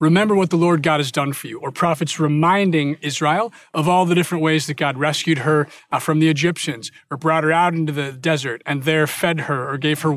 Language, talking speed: English, 230 wpm